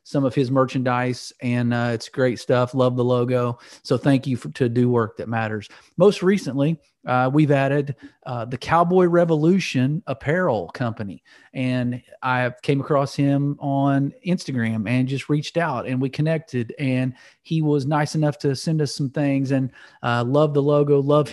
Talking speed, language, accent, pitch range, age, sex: 170 wpm, English, American, 120-145 Hz, 40-59, male